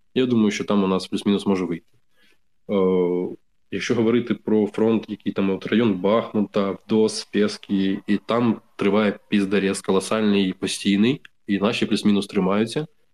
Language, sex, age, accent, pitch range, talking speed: Ukrainian, male, 20-39, native, 95-110 Hz, 140 wpm